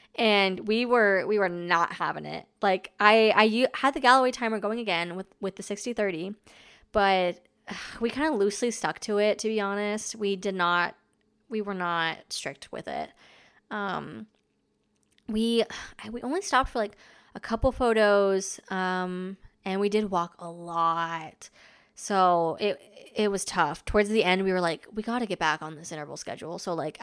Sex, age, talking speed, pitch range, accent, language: female, 20-39, 180 wpm, 180-225 Hz, American, English